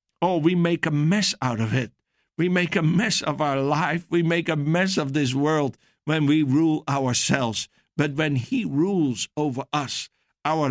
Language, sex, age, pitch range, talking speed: English, male, 60-79, 135-160 Hz, 185 wpm